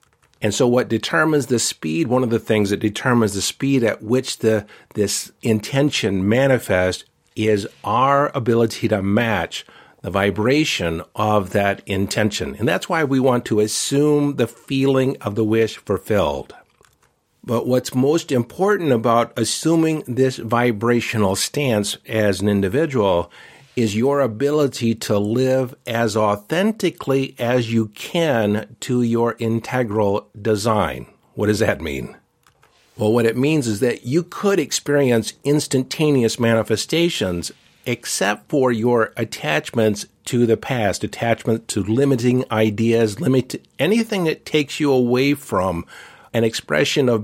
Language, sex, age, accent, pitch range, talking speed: English, male, 50-69, American, 110-135 Hz, 135 wpm